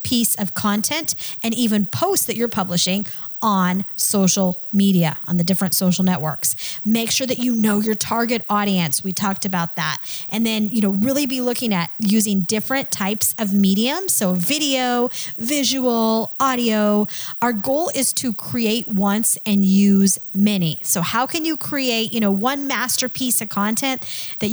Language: English